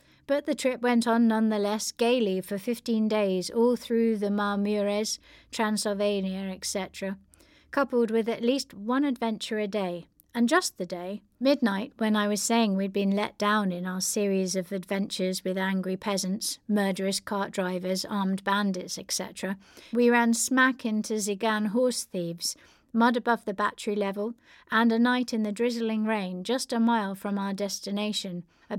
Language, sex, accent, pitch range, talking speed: English, female, British, 195-230 Hz, 160 wpm